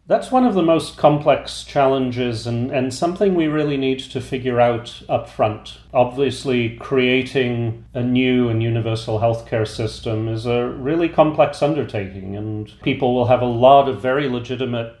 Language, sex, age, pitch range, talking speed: English, male, 40-59, 105-125 Hz, 160 wpm